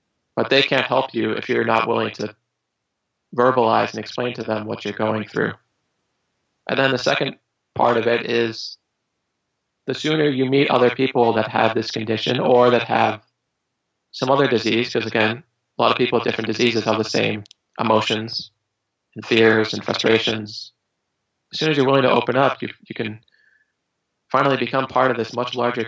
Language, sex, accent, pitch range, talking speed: English, male, American, 110-125 Hz, 180 wpm